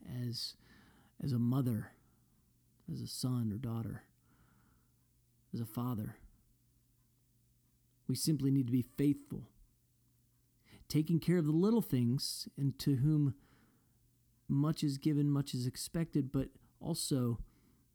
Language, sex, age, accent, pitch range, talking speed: English, male, 40-59, American, 115-130 Hz, 115 wpm